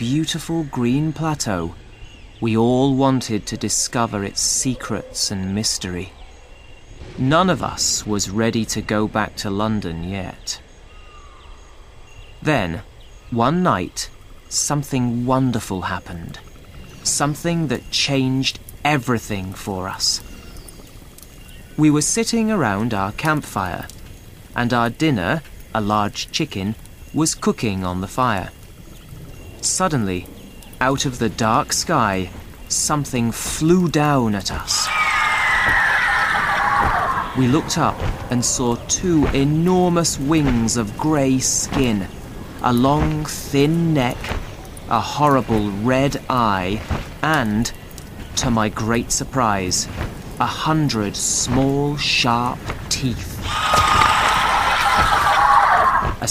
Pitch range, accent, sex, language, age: 100-140 Hz, British, male, Chinese, 30-49